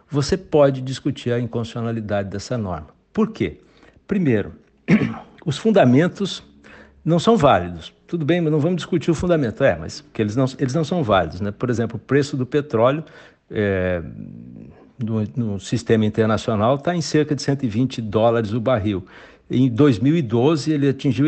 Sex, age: male, 60-79